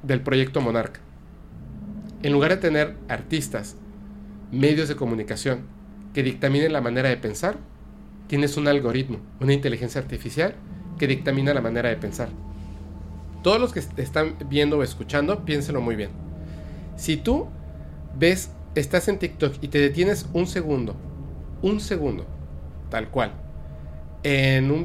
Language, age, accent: Spanish, 40-59, Mexican